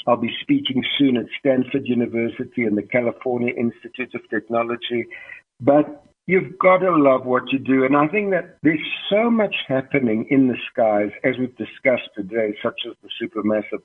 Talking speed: 175 wpm